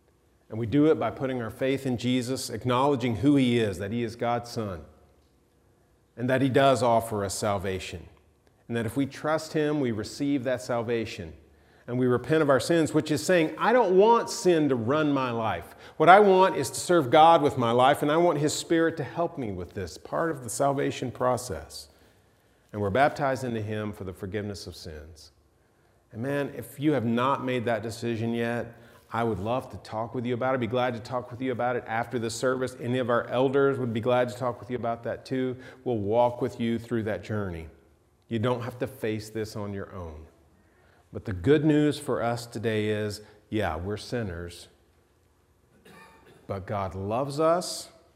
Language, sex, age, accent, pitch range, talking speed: English, male, 40-59, American, 105-135 Hz, 205 wpm